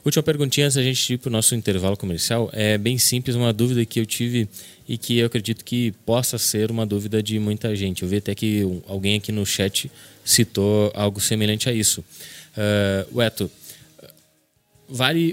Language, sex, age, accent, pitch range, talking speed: Portuguese, male, 20-39, Brazilian, 100-120 Hz, 185 wpm